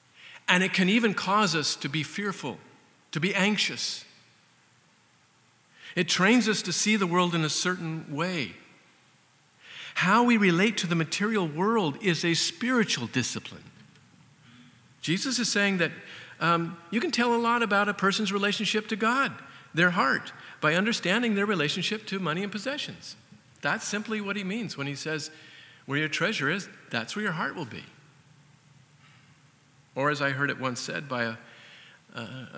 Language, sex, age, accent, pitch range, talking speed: English, male, 50-69, American, 140-195 Hz, 160 wpm